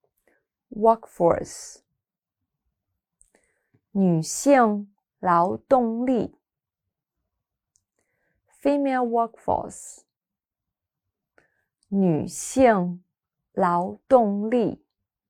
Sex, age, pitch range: female, 30-49, 175-245 Hz